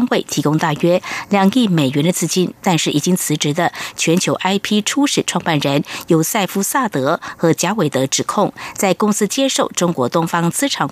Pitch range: 155-200 Hz